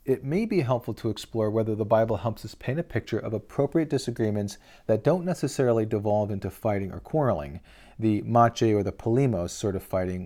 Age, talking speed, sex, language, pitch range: 40-59, 195 wpm, male, English, 100-120 Hz